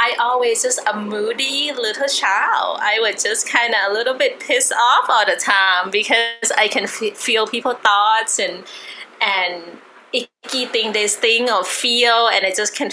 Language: Thai